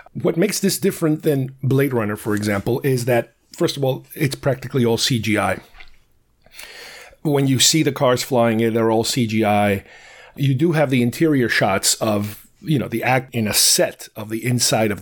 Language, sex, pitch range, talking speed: English, male, 115-155 Hz, 185 wpm